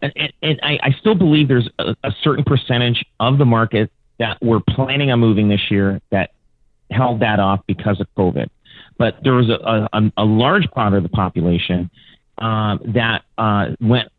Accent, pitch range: American, 105-125 Hz